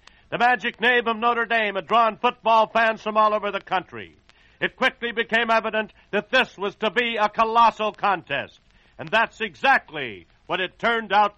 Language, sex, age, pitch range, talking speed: English, male, 60-79, 195-235 Hz, 180 wpm